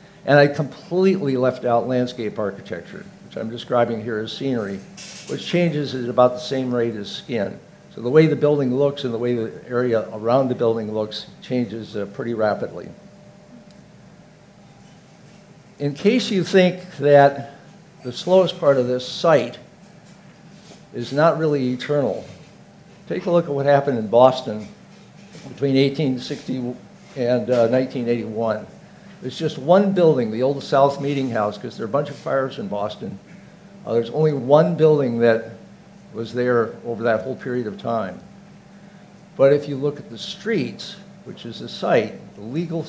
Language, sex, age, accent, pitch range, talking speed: English, male, 60-79, American, 125-175 Hz, 160 wpm